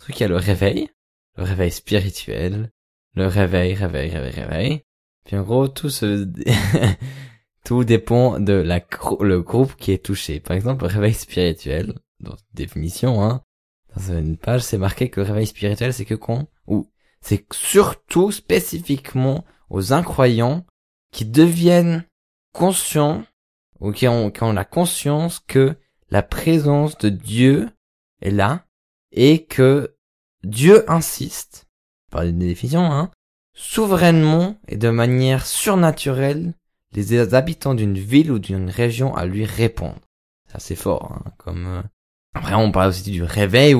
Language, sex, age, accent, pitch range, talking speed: French, male, 20-39, French, 95-135 Hz, 145 wpm